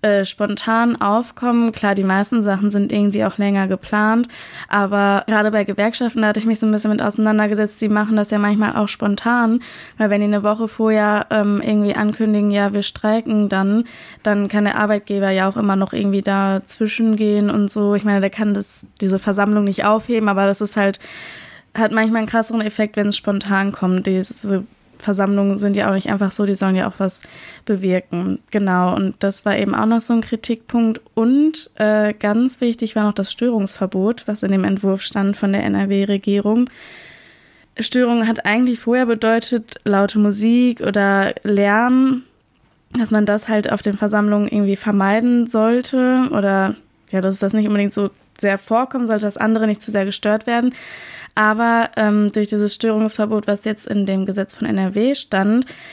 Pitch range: 200-220 Hz